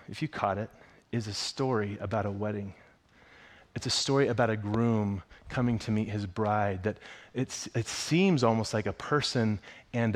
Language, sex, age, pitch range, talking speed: English, male, 30-49, 105-130 Hz, 175 wpm